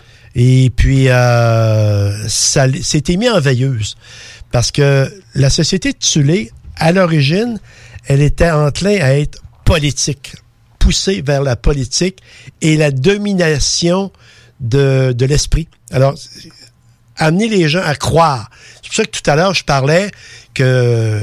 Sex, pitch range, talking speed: male, 115-160 Hz, 135 wpm